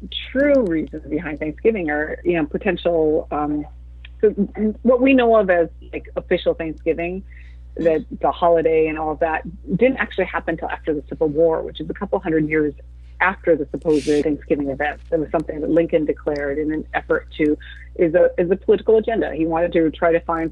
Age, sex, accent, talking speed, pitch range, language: 30-49, female, American, 185 wpm, 155-195 Hz, English